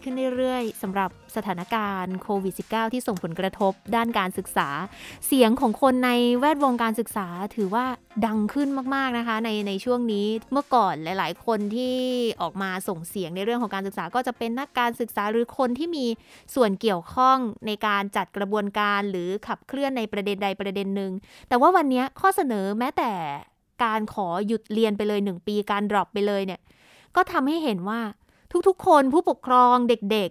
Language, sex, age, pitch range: Thai, female, 20-39, 205-270 Hz